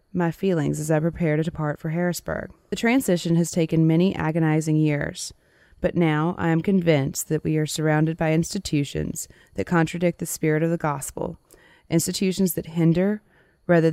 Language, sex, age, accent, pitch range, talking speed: English, female, 20-39, American, 155-175 Hz, 165 wpm